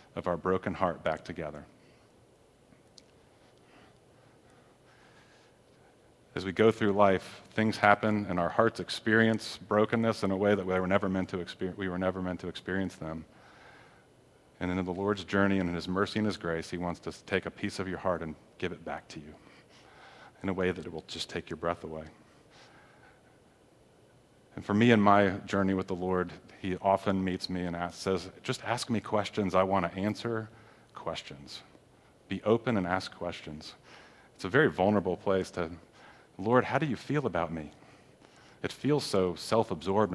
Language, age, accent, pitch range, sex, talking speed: English, 40-59, American, 90-105 Hz, male, 180 wpm